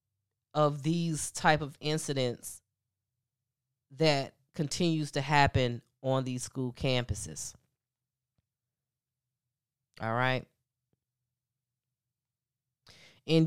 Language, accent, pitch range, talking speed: English, American, 130-160 Hz, 70 wpm